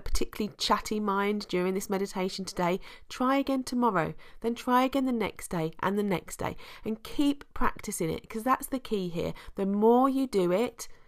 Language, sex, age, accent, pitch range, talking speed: English, female, 30-49, British, 175-220 Hz, 185 wpm